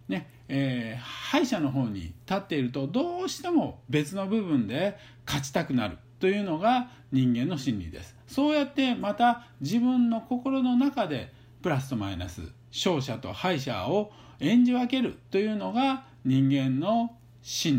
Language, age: Japanese, 50-69